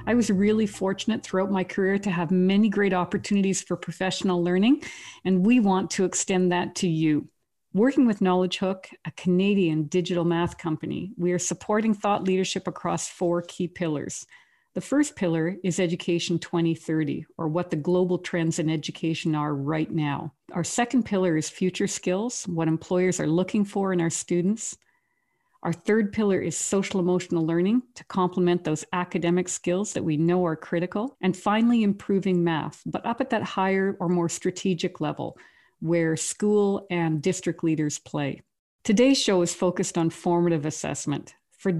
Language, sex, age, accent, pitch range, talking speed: English, female, 50-69, American, 165-195 Hz, 165 wpm